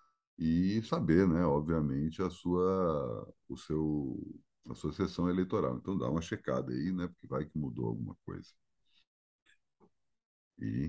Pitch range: 70-90 Hz